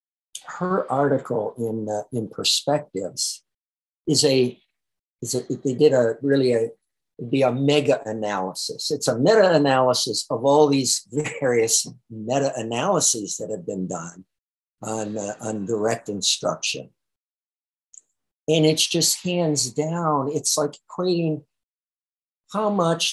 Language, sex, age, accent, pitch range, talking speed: English, male, 60-79, American, 105-140 Hz, 125 wpm